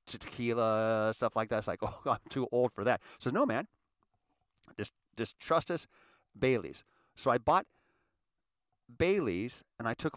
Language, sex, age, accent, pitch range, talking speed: English, male, 50-69, American, 110-155 Hz, 160 wpm